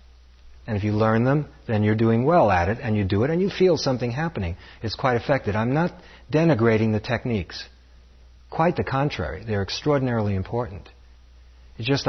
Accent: American